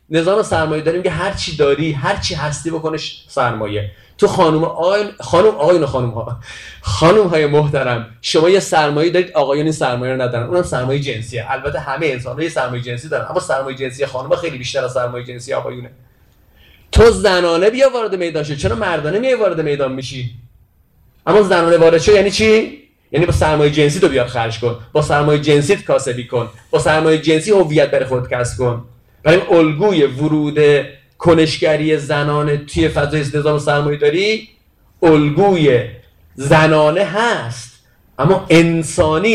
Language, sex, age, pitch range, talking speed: Persian, male, 30-49, 125-165 Hz, 155 wpm